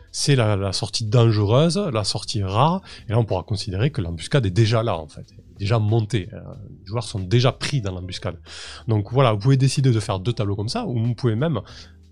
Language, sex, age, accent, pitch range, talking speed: French, male, 20-39, French, 100-125 Hz, 230 wpm